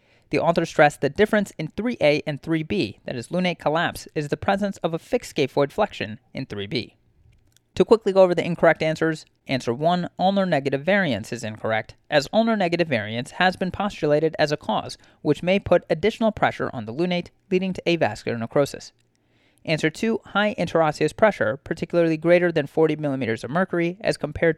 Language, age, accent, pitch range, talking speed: English, 30-49, American, 140-190 Hz, 175 wpm